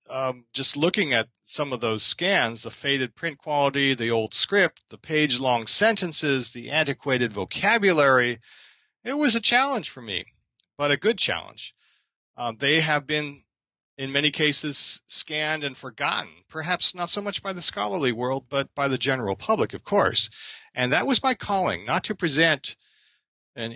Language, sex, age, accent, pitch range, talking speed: English, male, 40-59, American, 120-165 Hz, 165 wpm